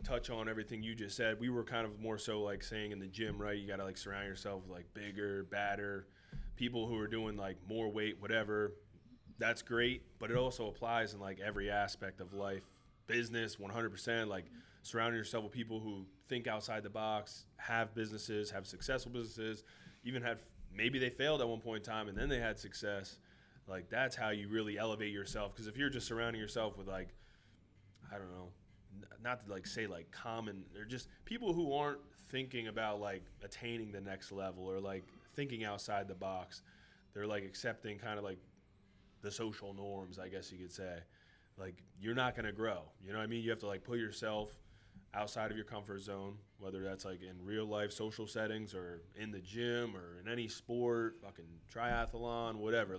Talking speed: 200 wpm